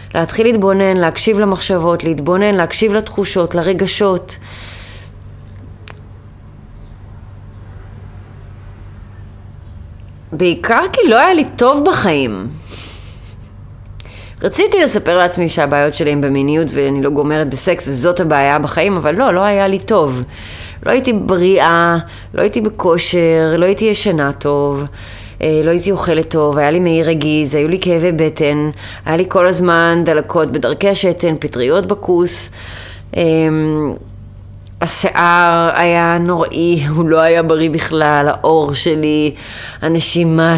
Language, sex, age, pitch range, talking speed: Hebrew, female, 30-49, 105-180 Hz, 115 wpm